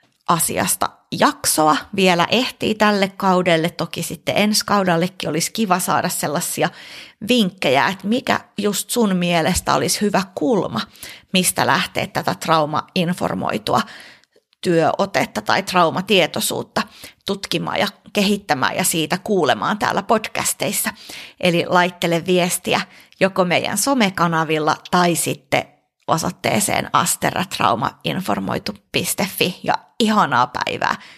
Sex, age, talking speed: female, 30-49, 100 wpm